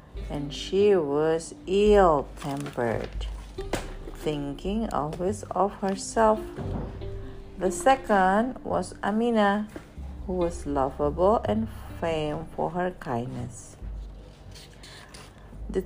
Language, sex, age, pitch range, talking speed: Indonesian, female, 50-69, 135-220 Hz, 80 wpm